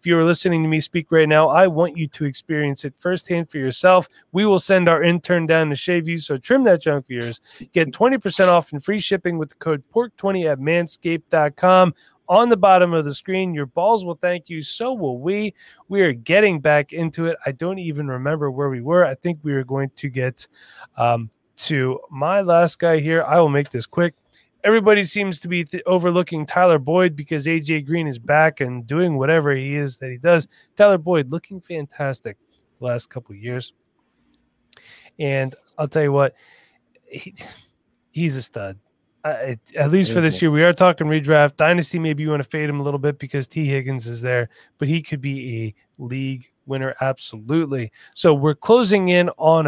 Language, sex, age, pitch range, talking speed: English, male, 30-49, 140-175 Hz, 200 wpm